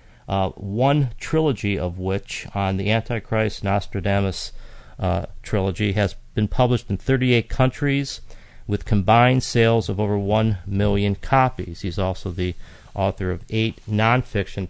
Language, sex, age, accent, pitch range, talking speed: English, male, 40-59, American, 95-115 Hz, 130 wpm